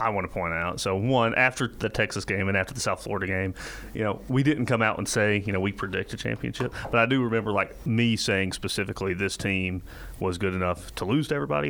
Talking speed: 245 wpm